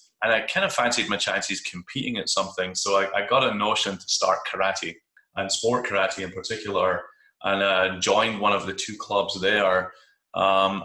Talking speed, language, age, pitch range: 190 wpm, English, 20-39, 95-115 Hz